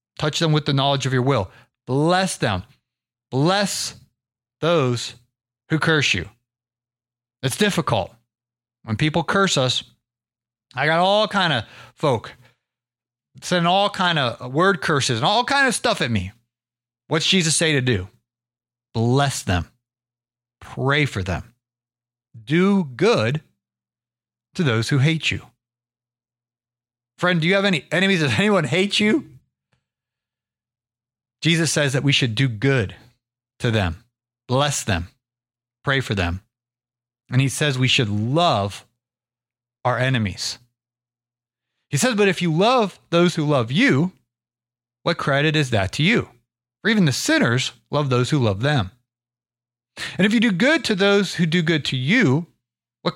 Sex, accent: male, American